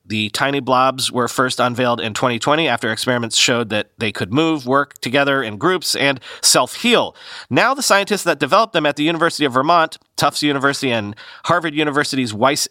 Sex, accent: male, American